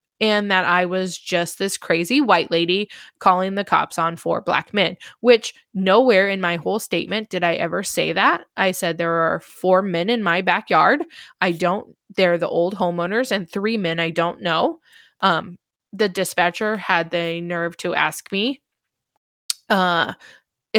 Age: 20-39